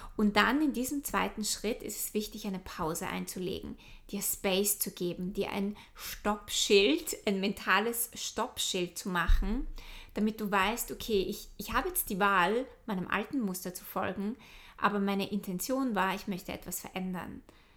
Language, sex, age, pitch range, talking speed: German, female, 20-39, 195-225 Hz, 160 wpm